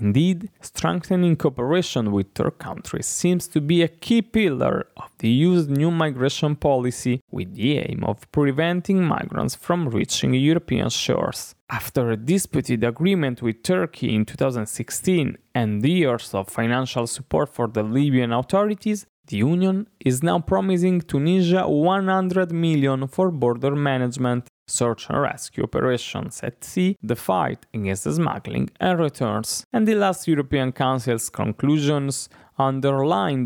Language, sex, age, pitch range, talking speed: English, male, 20-39, 125-175 Hz, 135 wpm